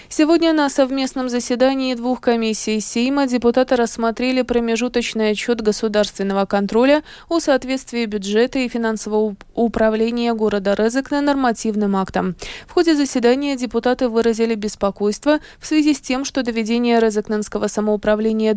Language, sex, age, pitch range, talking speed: Russian, female, 20-39, 215-270 Hz, 125 wpm